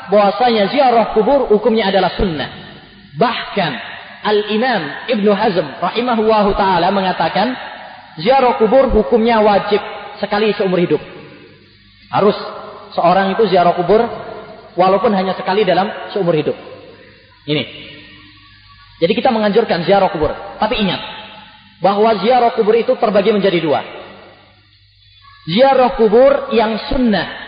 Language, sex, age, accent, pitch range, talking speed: English, male, 30-49, Indonesian, 155-225 Hz, 105 wpm